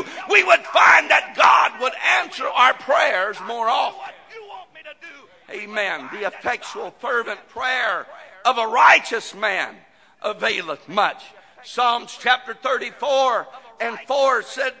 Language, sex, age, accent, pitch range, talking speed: English, male, 50-69, American, 245-320 Hz, 115 wpm